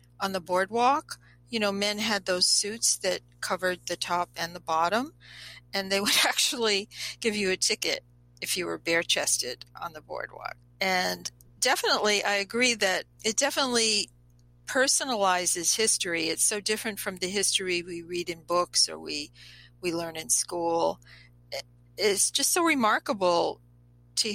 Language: English